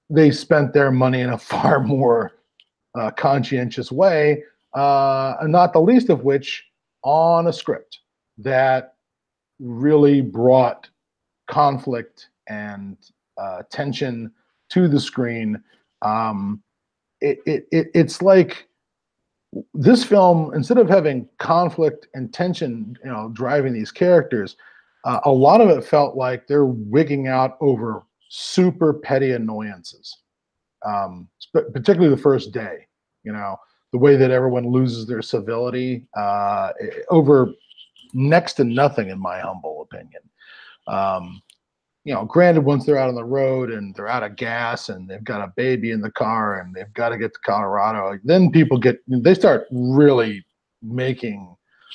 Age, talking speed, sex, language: 40-59, 145 wpm, male, English